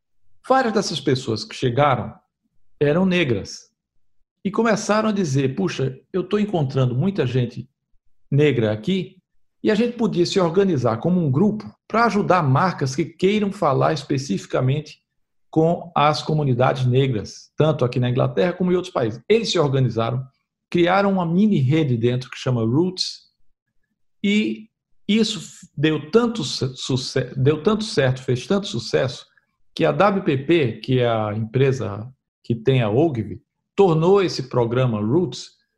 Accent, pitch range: Brazilian, 125-180 Hz